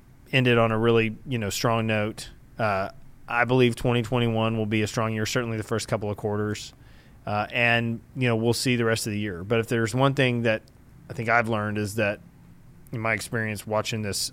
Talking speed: 215 wpm